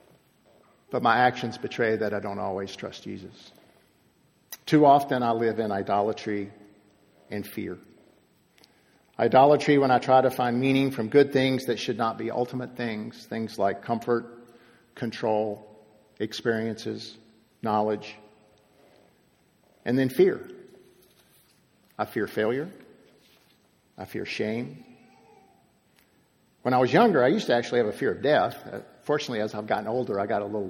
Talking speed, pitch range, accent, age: 140 wpm, 110-135 Hz, American, 50-69